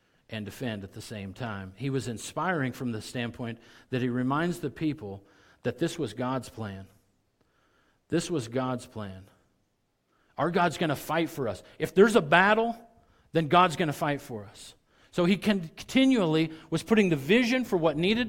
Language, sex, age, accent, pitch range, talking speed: English, male, 50-69, American, 115-175 Hz, 170 wpm